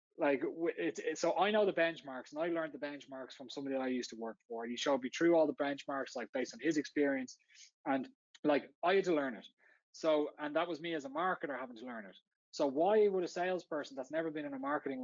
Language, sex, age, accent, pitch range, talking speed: English, male, 20-39, Irish, 135-165 Hz, 245 wpm